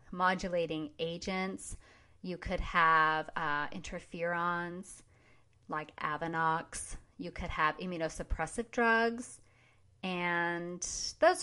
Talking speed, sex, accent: 85 wpm, female, American